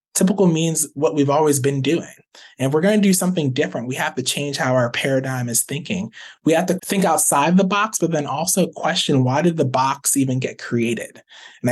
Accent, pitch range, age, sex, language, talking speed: American, 130-165 Hz, 20-39, male, English, 215 wpm